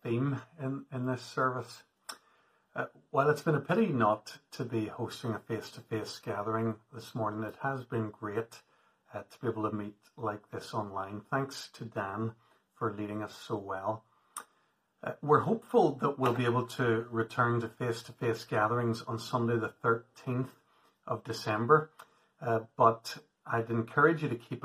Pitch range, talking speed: 110-130 Hz, 165 wpm